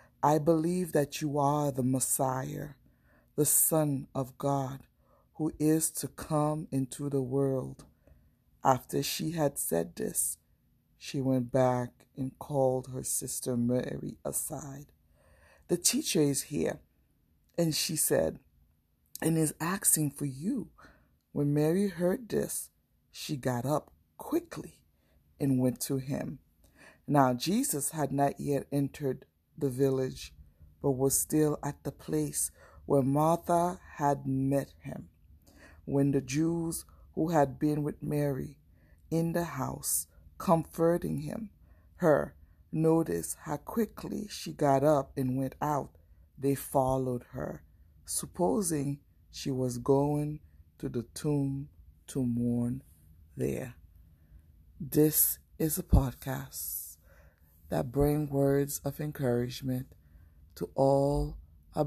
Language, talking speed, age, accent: English, 120 wpm, 60-79, American